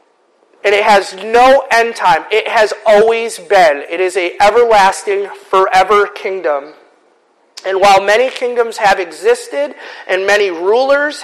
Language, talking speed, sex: English, 135 wpm, male